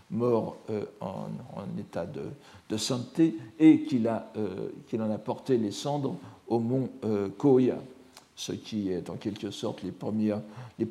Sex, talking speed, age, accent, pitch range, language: male, 165 wpm, 60-79, French, 105-130 Hz, French